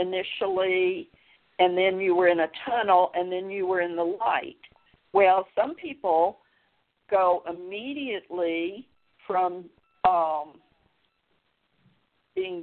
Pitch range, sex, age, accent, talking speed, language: 180-215 Hz, female, 50-69, American, 110 wpm, English